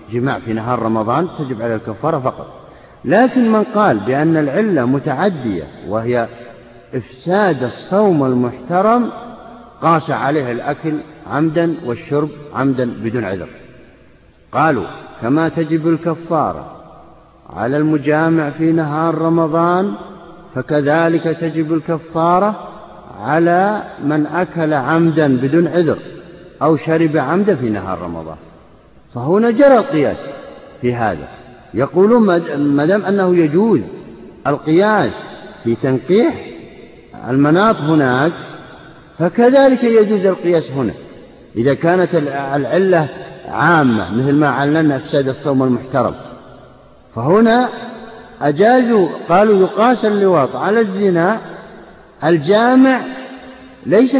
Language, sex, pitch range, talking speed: Arabic, male, 140-200 Hz, 95 wpm